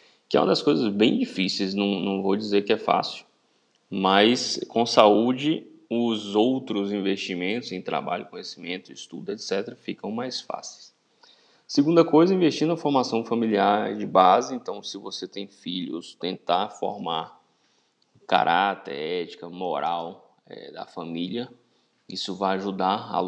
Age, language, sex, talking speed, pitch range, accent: 20-39, Portuguese, male, 135 wpm, 95-115 Hz, Brazilian